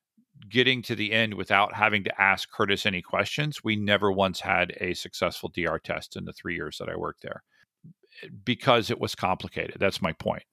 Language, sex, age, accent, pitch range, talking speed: English, male, 50-69, American, 95-110 Hz, 195 wpm